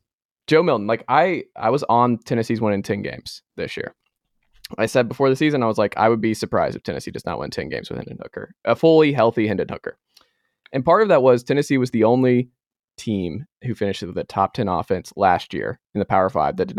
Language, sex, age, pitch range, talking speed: English, male, 20-39, 100-125 Hz, 235 wpm